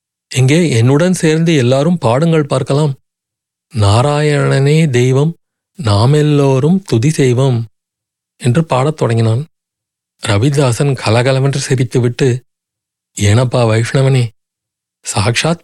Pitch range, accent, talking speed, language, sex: 120-155 Hz, native, 75 wpm, Tamil, male